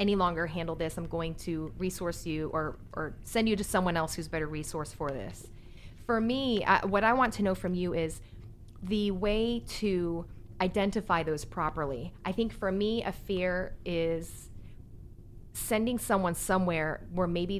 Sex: female